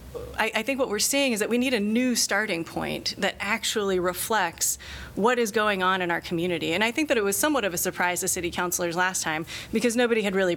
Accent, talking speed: American, 245 wpm